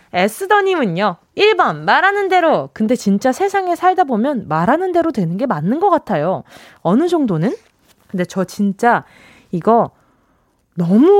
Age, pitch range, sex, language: 20-39, 190-310 Hz, female, Korean